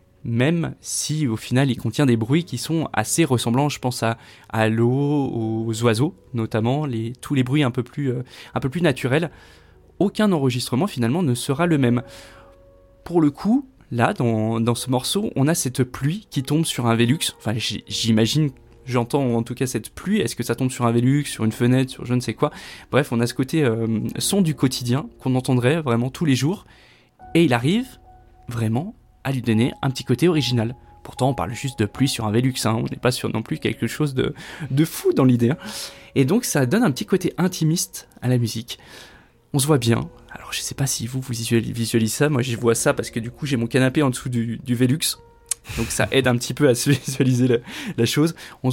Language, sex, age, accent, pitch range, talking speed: French, male, 20-39, French, 115-145 Hz, 225 wpm